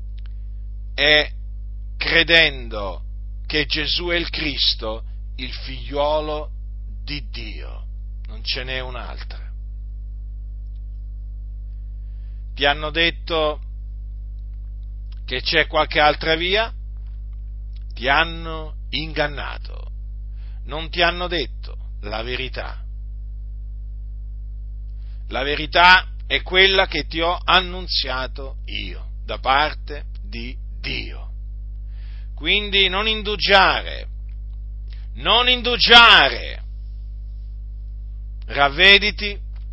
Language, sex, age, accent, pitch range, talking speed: Italian, male, 40-59, native, 100-150 Hz, 75 wpm